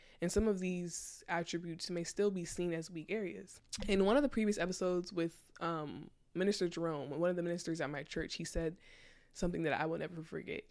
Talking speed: 205 wpm